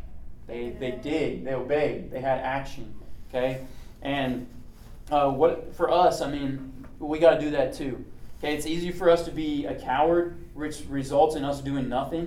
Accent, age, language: American, 20-39, English